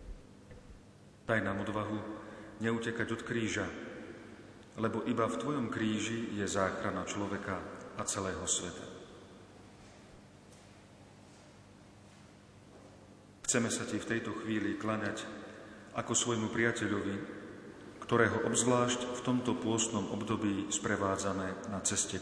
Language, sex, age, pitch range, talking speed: Slovak, male, 40-59, 100-110 Hz, 95 wpm